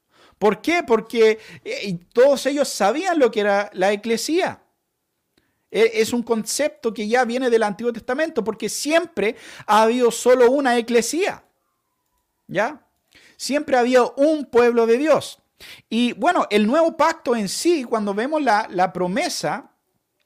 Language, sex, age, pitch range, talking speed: Spanish, male, 50-69, 190-250 Hz, 145 wpm